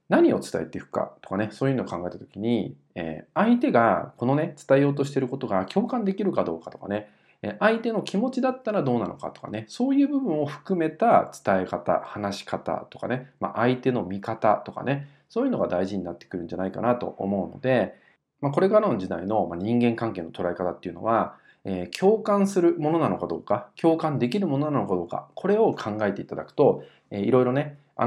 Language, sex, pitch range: Japanese, male, 95-150 Hz